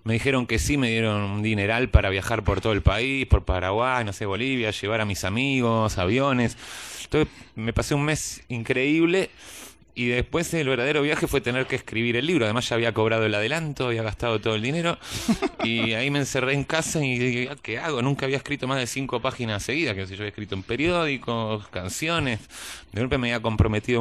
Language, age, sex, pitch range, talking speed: Spanish, 30-49, male, 105-135 Hz, 210 wpm